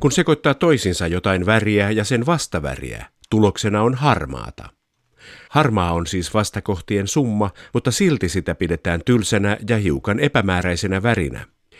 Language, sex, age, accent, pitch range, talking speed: Finnish, male, 50-69, native, 85-110 Hz, 125 wpm